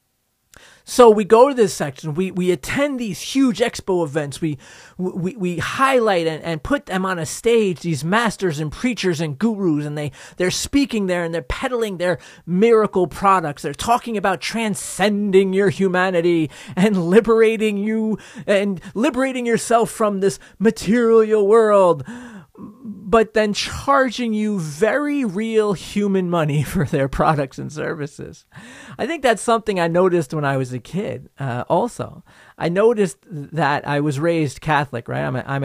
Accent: American